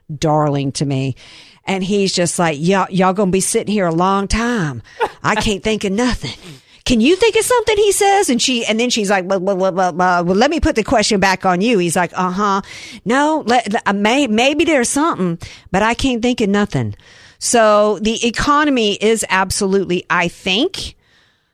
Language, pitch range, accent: English, 165-220 Hz, American